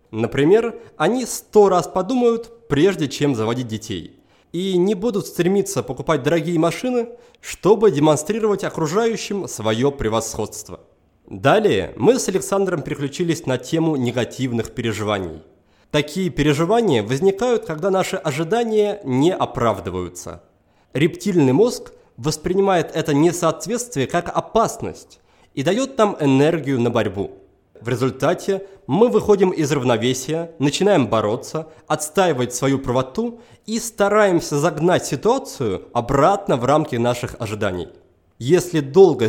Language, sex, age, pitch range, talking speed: Russian, male, 30-49, 130-195 Hz, 110 wpm